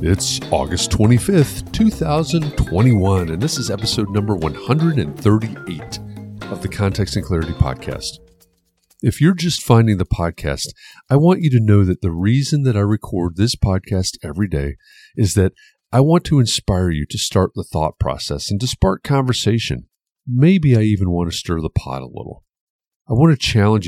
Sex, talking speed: male, 170 wpm